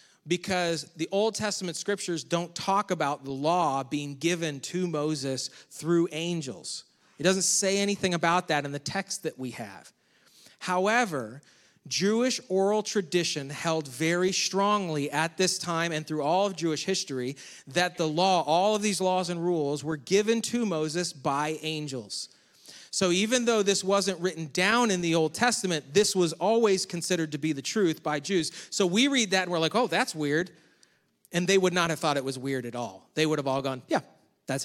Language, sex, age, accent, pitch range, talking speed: English, male, 30-49, American, 150-200 Hz, 185 wpm